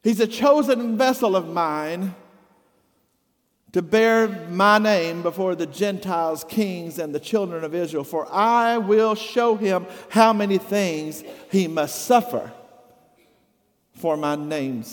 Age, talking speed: 50-69, 135 wpm